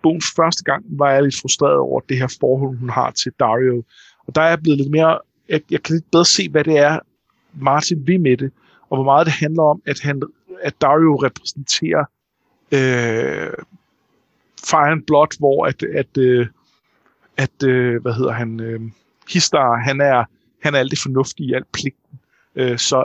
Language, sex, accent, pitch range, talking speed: Danish, male, native, 130-170 Hz, 185 wpm